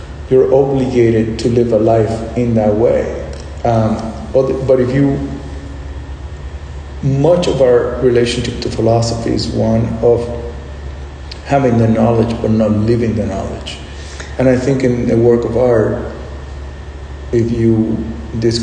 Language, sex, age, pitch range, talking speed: English, male, 40-59, 80-120 Hz, 130 wpm